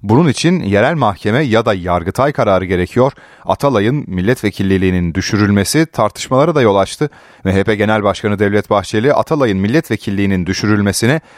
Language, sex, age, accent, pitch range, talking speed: Turkish, male, 30-49, native, 100-135 Hz, 125 wpm